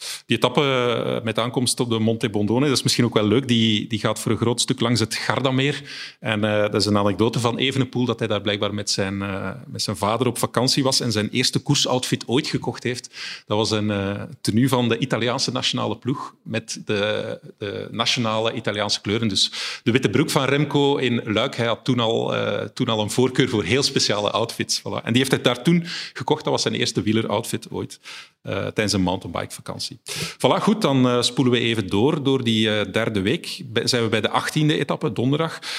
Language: Dutch